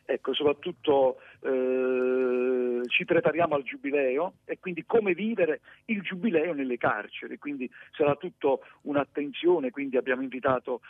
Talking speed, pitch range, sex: 120 wpm, 130-215 Hz, male